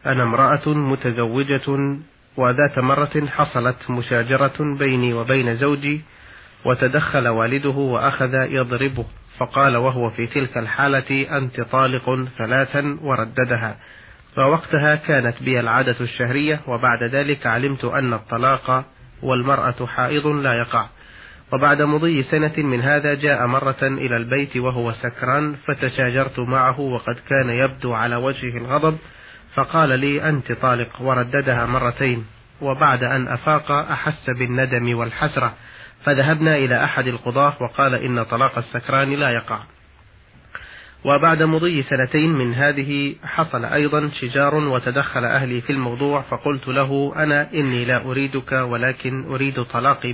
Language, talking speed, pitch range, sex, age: Arabic, 120 wpm, 125-145 Hz, male, 30-49